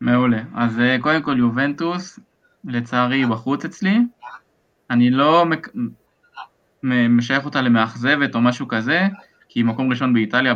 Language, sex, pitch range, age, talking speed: Hebrew, male, 120-145 Hz, 20-39, 140 wpm